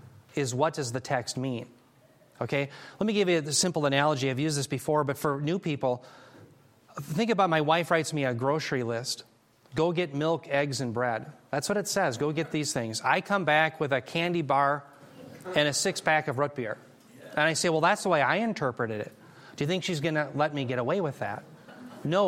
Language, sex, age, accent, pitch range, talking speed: English, male, 30-49, American, 140-175 Hz, 220 wpm